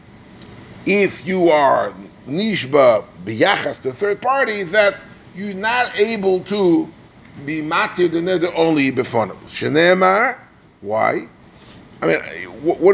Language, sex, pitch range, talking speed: English, male, 140-195 Hz, 110 wpm